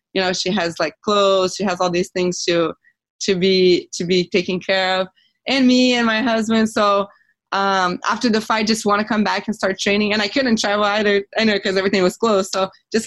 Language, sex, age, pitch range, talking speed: English, female, 20-39, 185-225 Hz, 225 wpm